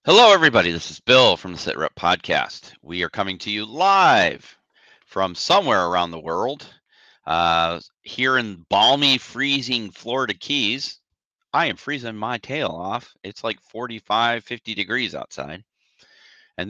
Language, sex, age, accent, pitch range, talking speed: English, male, 40-59, American, 95-150 Hz, 145 wpm